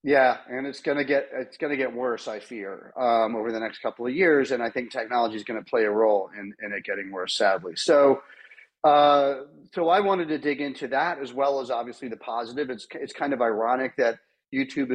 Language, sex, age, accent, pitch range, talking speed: English, male, 40-59, American, 110-130 Hz, 235 wpm